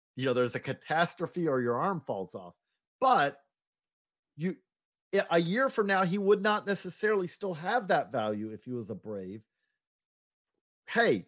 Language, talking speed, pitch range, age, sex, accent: English, 160 wpm, 145-200 Hz, 40-59, male, American